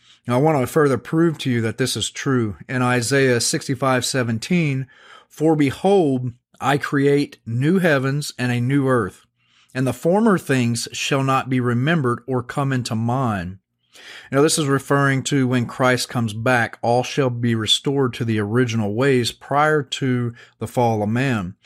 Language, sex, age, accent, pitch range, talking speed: English, male, 40-59, American, 120-145 Hz, 170 wpm